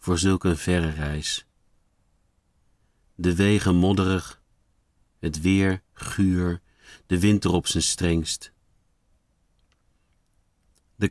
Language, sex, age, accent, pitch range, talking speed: Dutch, male, 50-69, Dutch, 80-95 Hz, 85 wpm